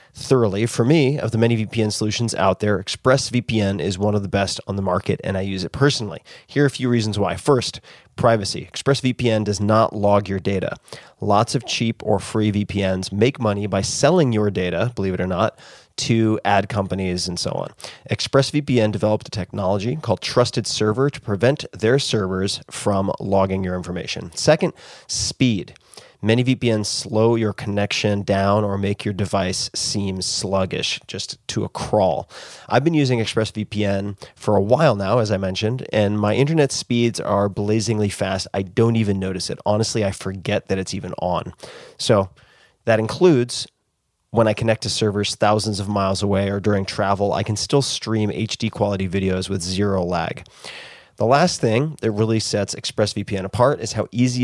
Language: English